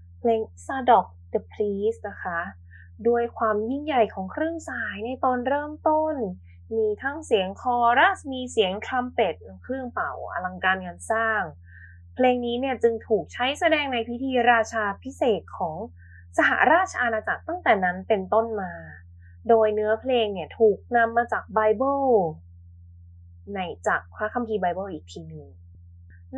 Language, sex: Thai, female